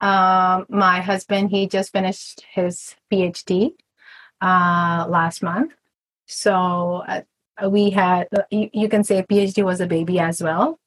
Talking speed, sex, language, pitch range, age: 145 wpm, female, English, 185-220 Hz, 30-49